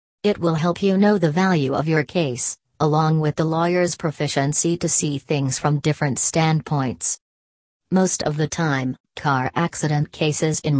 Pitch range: 145-175 Hz